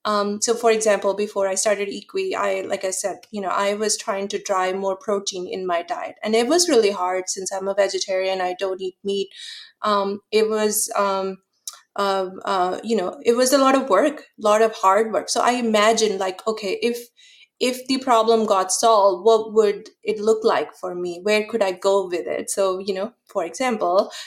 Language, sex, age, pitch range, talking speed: English, female, 30-49, 190-230 Hz, 210 wpm